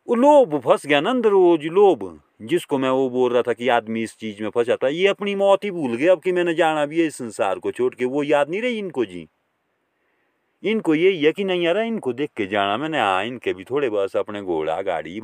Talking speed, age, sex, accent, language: 250 wpm, 40-59, male, native, Hindi